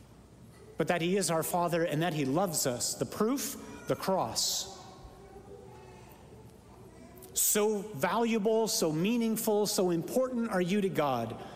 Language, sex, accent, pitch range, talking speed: English, male, American, 160-210 Hz, 130 wpm